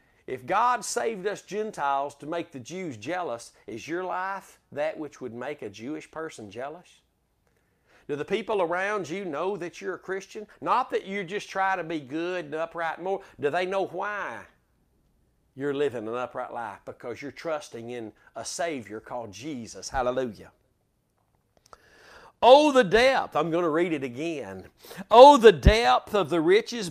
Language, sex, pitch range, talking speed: English, male, 155-210 Hz, 170 wpm